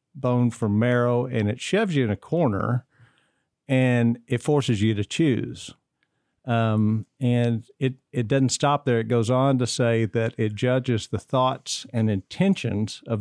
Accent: American